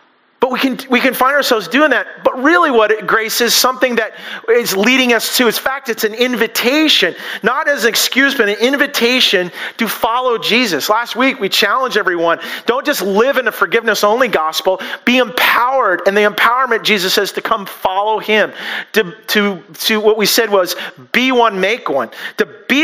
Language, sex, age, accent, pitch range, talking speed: English, male, 40-59, American, 200-250 Hz, 190 wpm